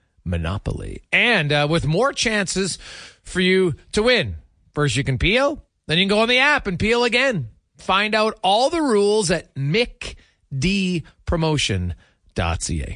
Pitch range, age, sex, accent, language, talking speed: 130-200 Hz, 40-59, male, American, English, 145 wpm